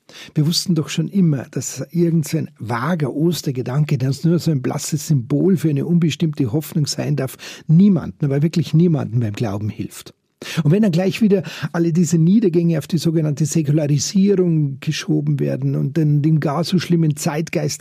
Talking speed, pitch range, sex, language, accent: 165 wpm, 140-170 Hz, male, German, Austrian